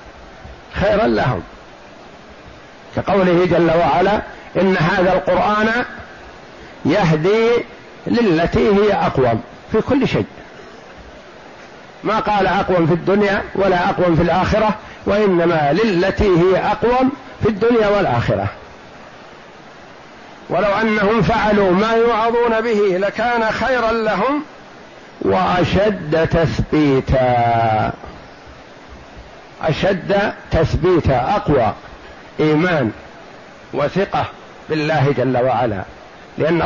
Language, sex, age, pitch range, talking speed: Arabic, male, 50-69, 160-210 Hz, 85 wpm